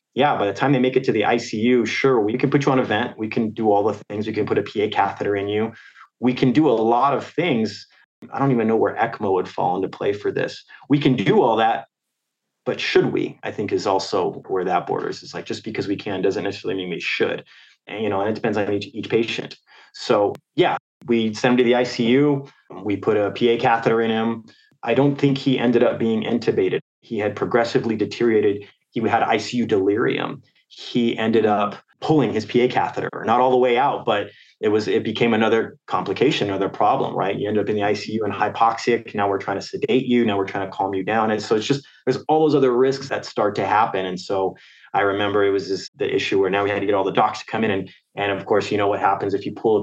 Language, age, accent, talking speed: English, 30-49, American, 245 wpm